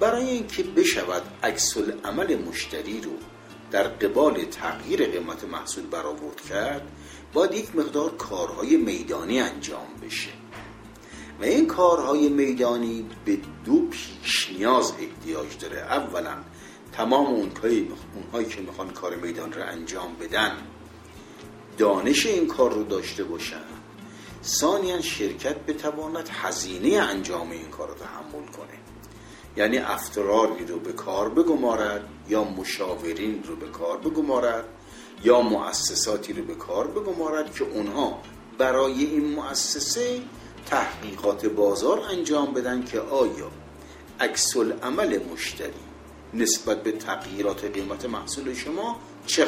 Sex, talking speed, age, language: male, 120 wpm, 50-69, Persian